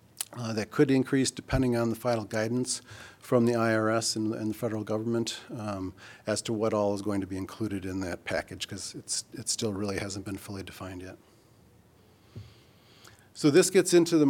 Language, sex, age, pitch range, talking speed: English, male, 40-59, 105-125 Hz, 185 wpm